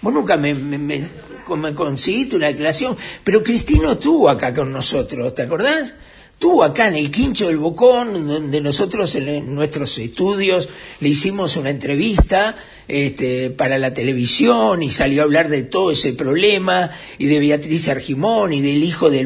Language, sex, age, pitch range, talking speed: Spanish, male, 50-69, 150-230 Hz, 165 wpm